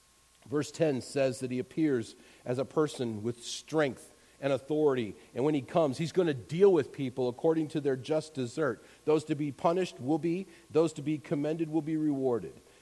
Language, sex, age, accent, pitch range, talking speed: English, male, 50-69, American, 120-165 Hz, 190 wpm